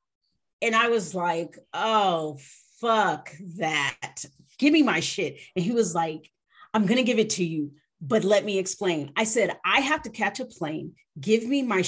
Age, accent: 40-59, American